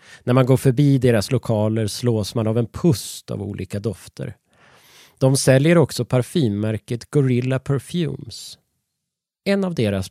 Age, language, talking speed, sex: 30-49, Swedish, 135 wpm, male